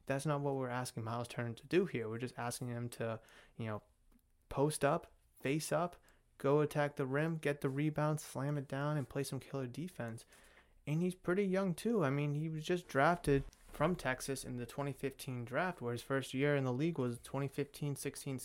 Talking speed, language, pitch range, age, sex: 200 wpm, English, 120-140 Hz, 20-39, male